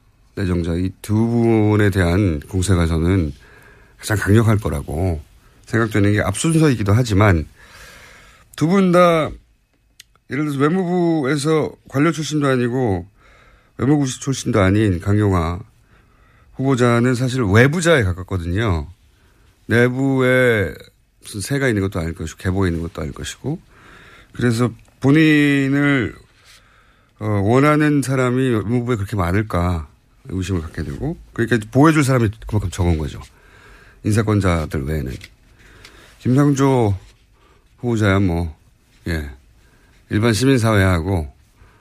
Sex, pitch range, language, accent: male, 90-130 Hz, Korean, native